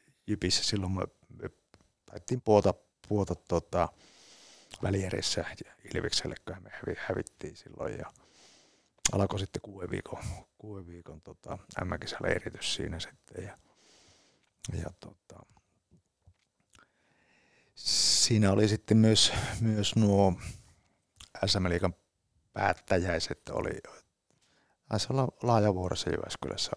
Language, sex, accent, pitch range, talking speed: Finnish, male, native, 90-110 Hz, 80 wpm